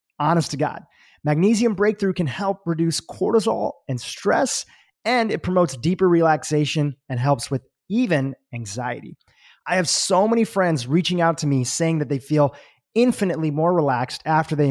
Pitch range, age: 140-190 Hz, 30-49